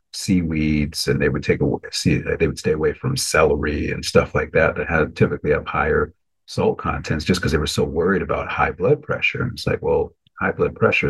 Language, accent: English, American